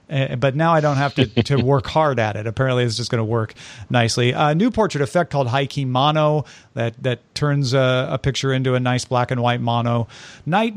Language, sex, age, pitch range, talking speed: English, male, 40-59, 130-165 Hz, 225 wpm